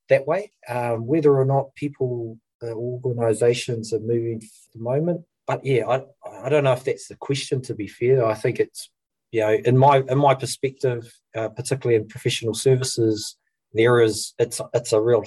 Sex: male